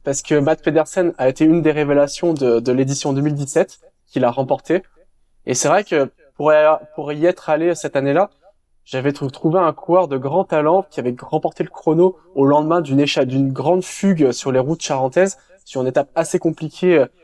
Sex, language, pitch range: male, French, 135-170 Hz